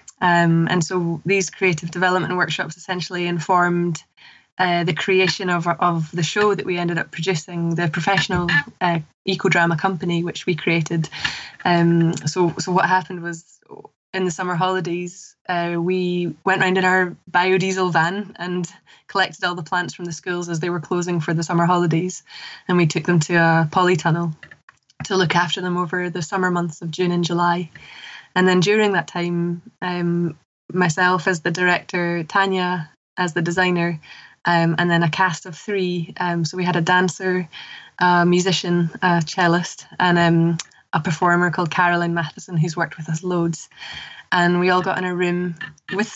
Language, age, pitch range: English, 10-29, 170-185 Hz